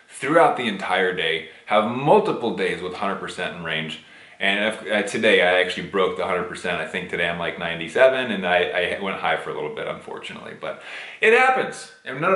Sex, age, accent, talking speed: male, 30-49, American, 195 wpm